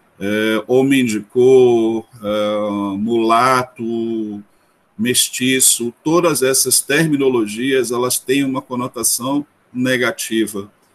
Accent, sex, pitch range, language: Brazilian, male, 115-145 Hz, Portuguese